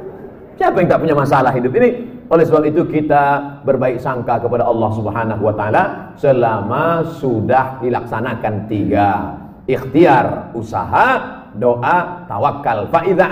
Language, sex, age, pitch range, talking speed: Indonesian, male, 40-59, 145-225 Hz, 115 wpm